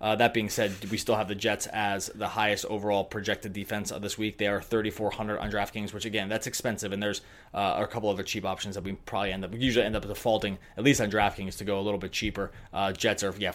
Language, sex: English, male